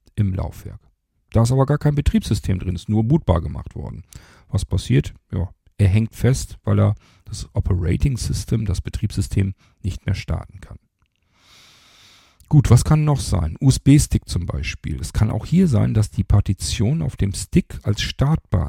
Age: 40-59